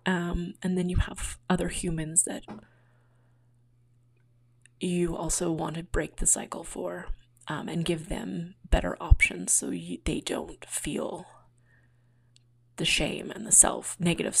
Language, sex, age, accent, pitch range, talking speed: English, female, 20-39, American, 120-175 Hz, 140 wpm